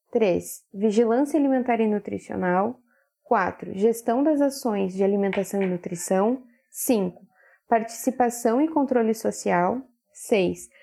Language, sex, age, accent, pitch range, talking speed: Portuguese, female, 10-29, Brazilian, 210-260 Hz, 105 wpm